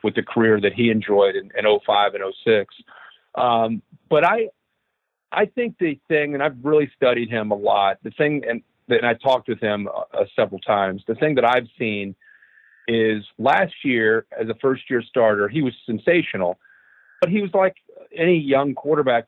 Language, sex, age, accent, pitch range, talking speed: English, male, 40-59, American, 110-145 Hz, 185 wpm